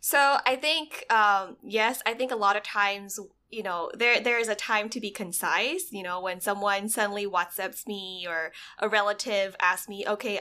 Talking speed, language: 195 wpm, English